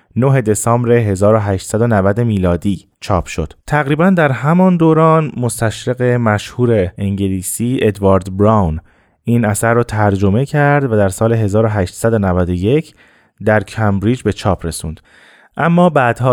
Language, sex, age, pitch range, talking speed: Persian, male, 30-49, 100-125 Hz, 115 wpm